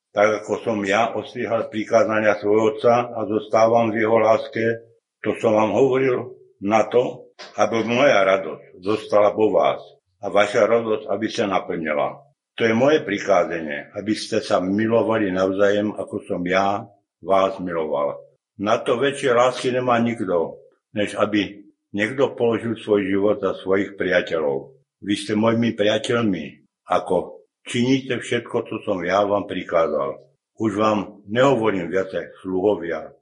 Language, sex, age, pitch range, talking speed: Slovak, male, 60-79, 100-120 Hz, 140 wpm